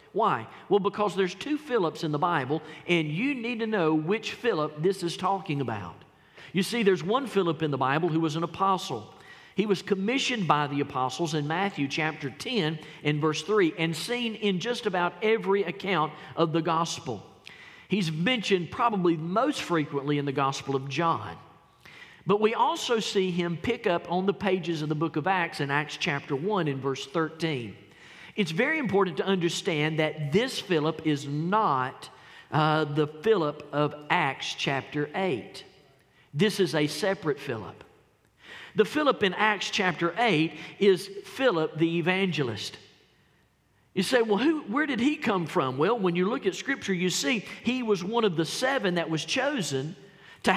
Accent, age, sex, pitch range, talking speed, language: American, 50-69, male, 155-205 Hz, 170 wpm, English